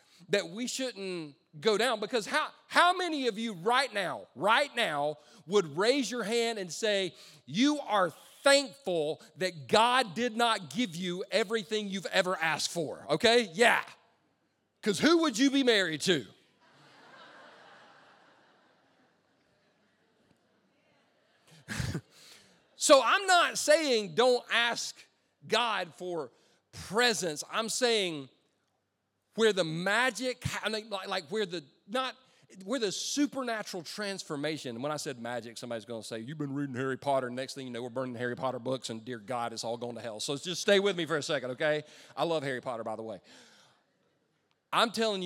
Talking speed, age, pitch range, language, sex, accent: 160 wpm, 40-59, 130-225 Hz, English, male, American